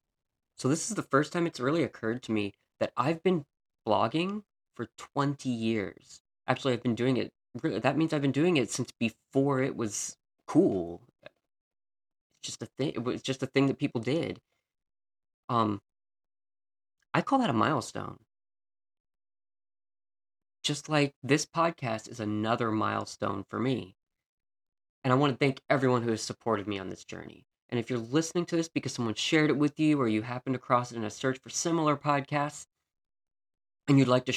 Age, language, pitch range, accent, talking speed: 20-39, English, 105-145 Hz, American, 175 wpm